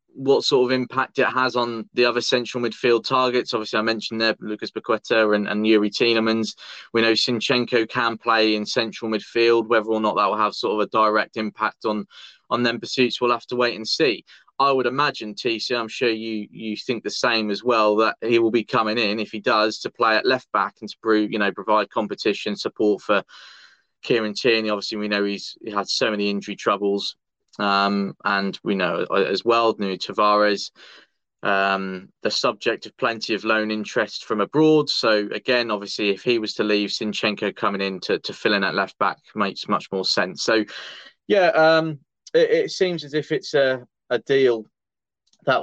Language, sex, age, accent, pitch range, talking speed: English, male, 20-39, British, 105-120 Hz, 200 wpm